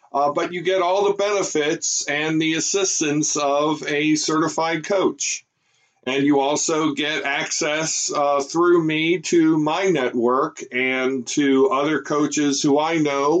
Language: English